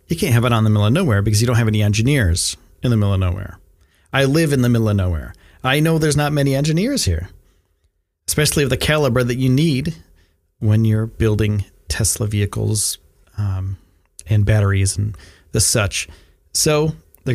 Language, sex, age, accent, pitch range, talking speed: English, male, 40-59, American, 85-130 Hz, 185 wpm